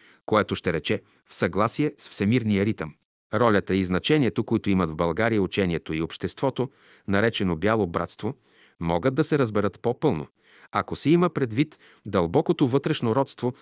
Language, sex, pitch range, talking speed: Bulgarian, male, 95-130 Hz, 145 wpm